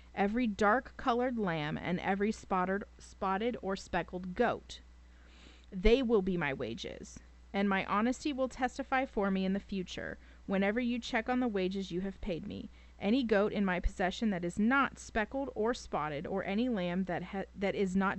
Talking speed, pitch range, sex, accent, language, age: 180 wpm, 170-220 Hz, female, American, English, 30-49